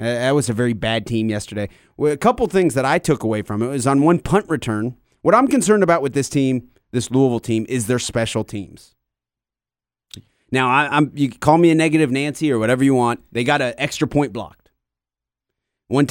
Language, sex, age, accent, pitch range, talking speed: English, male, 30-49, American, 120-160 Hz, 215 wpm